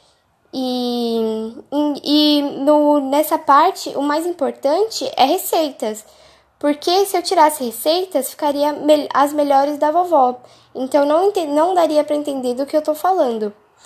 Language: Portuguese